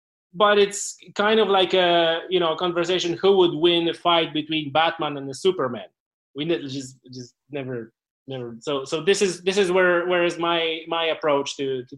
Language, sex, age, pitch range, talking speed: English, male, 20-39, 150-175 Hz, 195 wpm